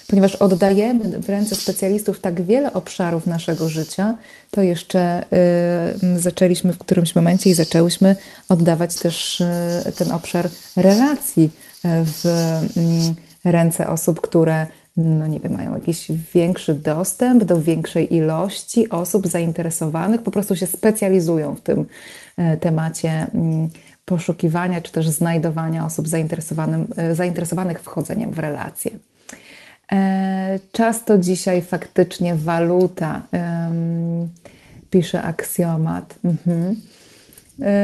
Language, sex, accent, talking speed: Polish, female, native, 95 wpm